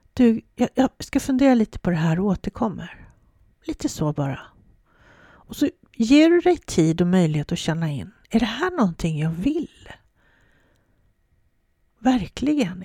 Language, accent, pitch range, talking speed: Swedish, native, 180-240 Hz, 150 wpm